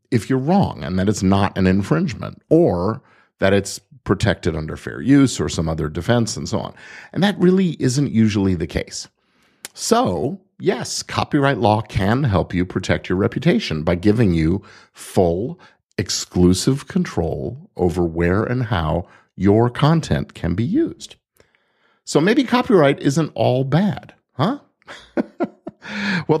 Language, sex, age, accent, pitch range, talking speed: English, male, 50-69, American, 90-140 Hz, 145 wpm